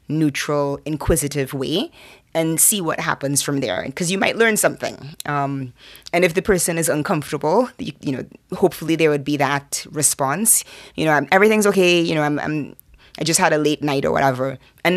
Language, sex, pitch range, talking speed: English, female, 140-170 Hz, 195 wpm